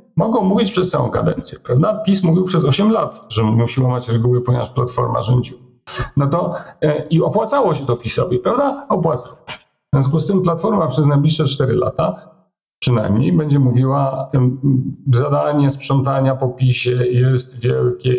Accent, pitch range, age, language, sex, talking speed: native, 125-150 Hz, 40-59, Polish, male, 160 wpm